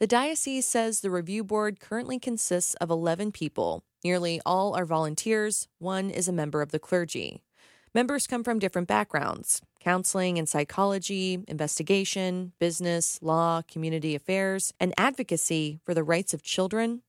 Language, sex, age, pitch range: English, female, 30-49, 170-220 Hz